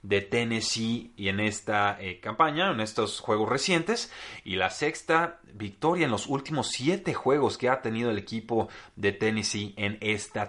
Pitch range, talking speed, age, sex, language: 100-120 Hz, 165 wpm, 30-49, male, Spanish